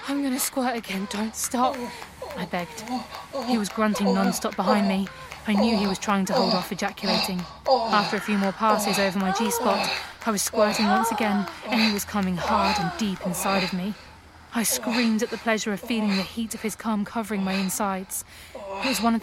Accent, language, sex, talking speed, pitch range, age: British, English, female, 205 wpm, 200-230 Hz, 20-39